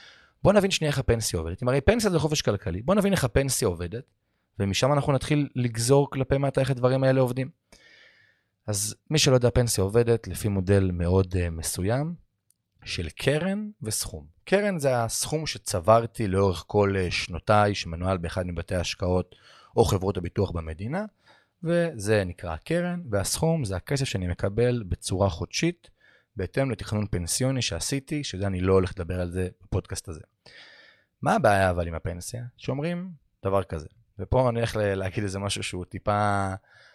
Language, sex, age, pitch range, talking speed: Hebrew, male, 30-49, 95-130 Hz, 155 wpm